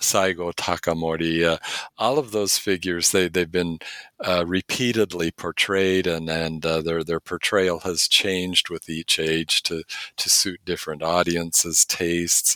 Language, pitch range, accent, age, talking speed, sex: English, 85-105 Hz, American, 50-69, 140 wpm, male